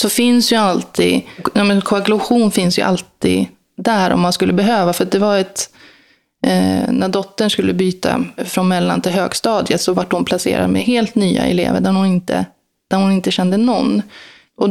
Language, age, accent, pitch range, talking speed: Swedish, 20-39, native, 185-220 Hz, 185 wpm